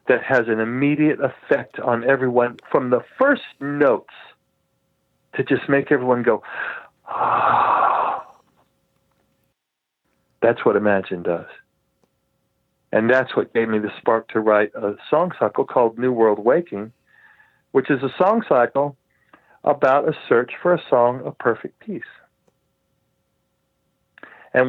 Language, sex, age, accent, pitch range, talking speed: English, male, 40-59, American, 115-145 Hz, 125 wpm